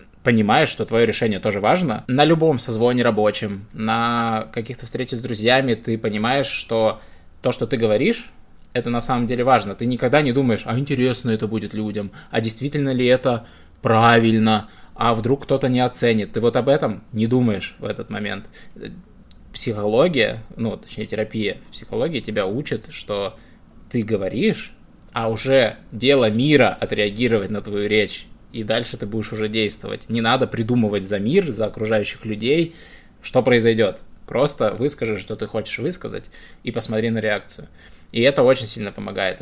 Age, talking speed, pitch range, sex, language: 20-39, 160 wpm, 110-125 Hz, male, Russian